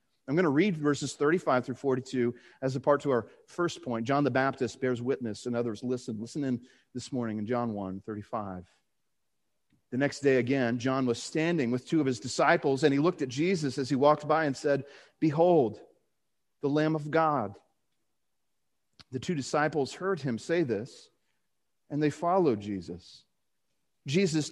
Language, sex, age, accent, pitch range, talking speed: English, male, 40-59, American, 125-160 Hz, 170 wpm